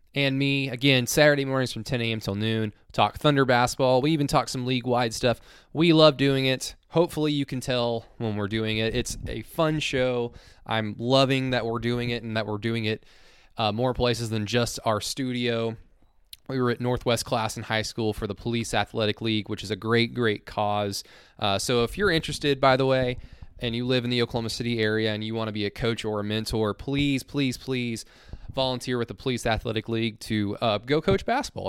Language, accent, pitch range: English, American, 110-130 Hz